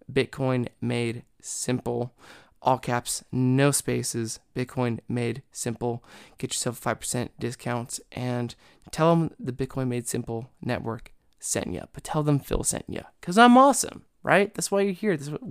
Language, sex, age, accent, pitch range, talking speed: English, male, 20-39, American, 120-140 Hz, 150 wpm